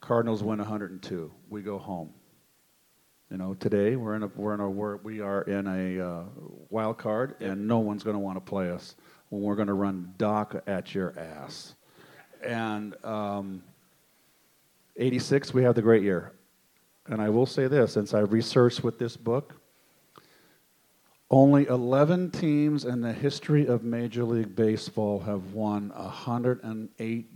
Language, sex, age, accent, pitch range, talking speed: English, male, 50-69, American, 105-125 Hz, 160 wpm